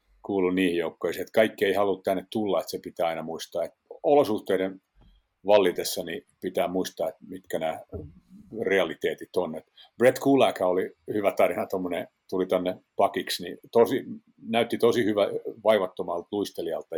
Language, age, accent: Finnish, 50-69, native